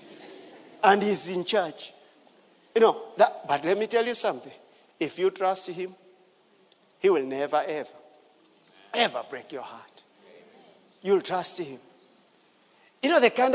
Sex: male